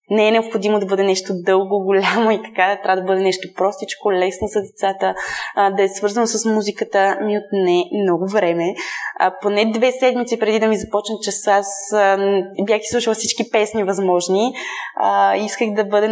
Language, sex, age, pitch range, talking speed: Bulgarian, female, 20-39, 190-230 Hz, 180 wpm